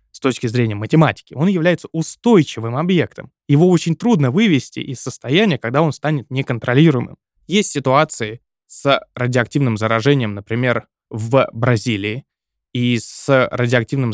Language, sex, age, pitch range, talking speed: Russian, male, 20-39, 120-145 Hz, 125 wpm